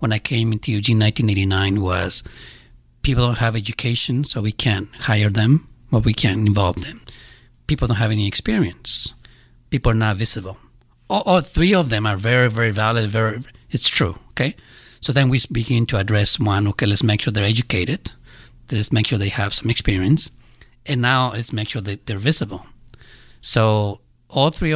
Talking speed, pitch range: 180 wpm, 105-125 Hz